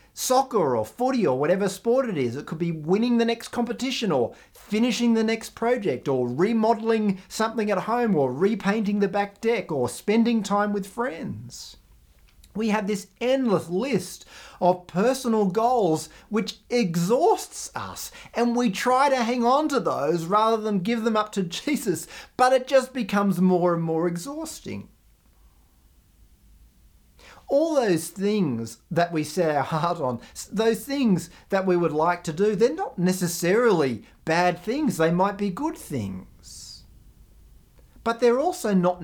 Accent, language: Australian, English